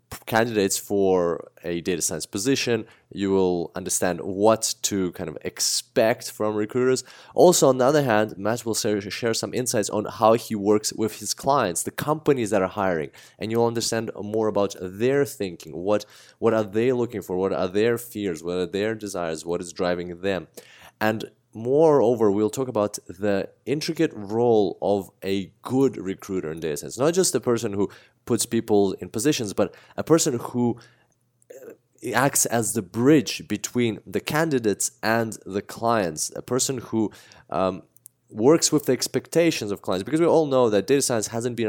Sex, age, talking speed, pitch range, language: male, 20-39, 175 wpm, 100-125 Hz, English